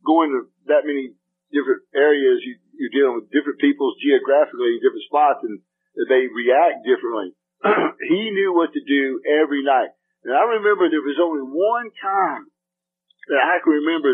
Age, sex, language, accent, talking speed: 50-69, male, English, American, 165 wpm